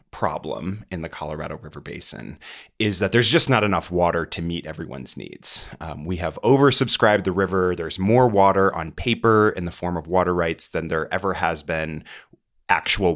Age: 30-49